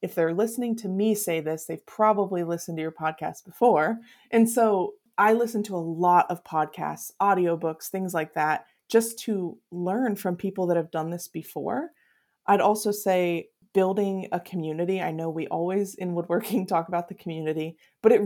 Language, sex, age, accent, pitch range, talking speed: English, female, 20-39, American, 170-225 Hz, 180 wpm